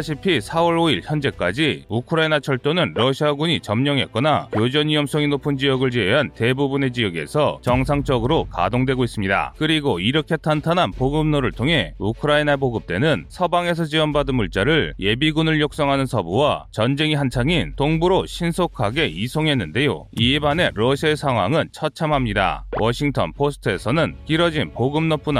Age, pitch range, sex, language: 30-49, 125-155 Hz, male, Korean